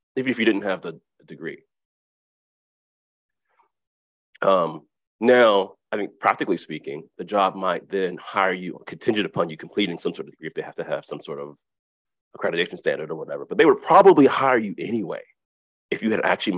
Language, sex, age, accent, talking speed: English, male, 30-49, American, 190 wpm